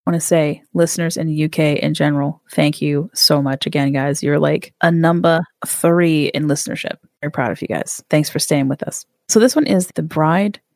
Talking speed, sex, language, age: 220 wpm, female, English, 30-49